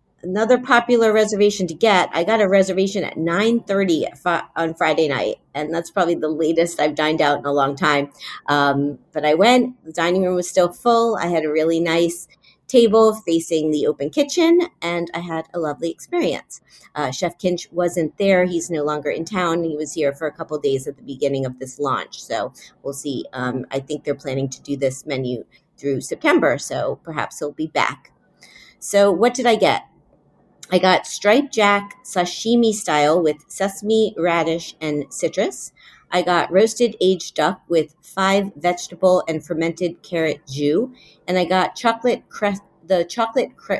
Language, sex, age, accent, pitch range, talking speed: English, female, 40-59, American, 150-190 Hz, 175 wpm